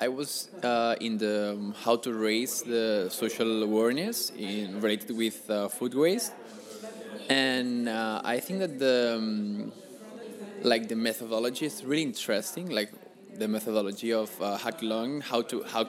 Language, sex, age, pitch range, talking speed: French, male, 20-39, 110-135 Hz, 145 wpm